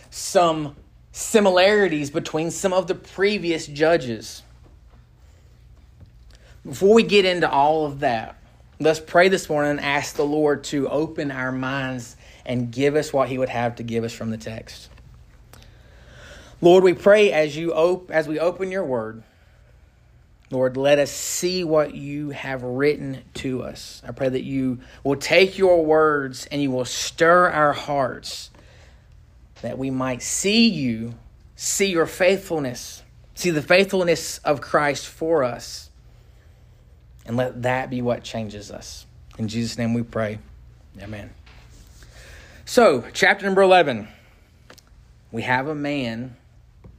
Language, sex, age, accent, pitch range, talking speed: English, male, 30-49, American, 120-175 Hz, 140 wpm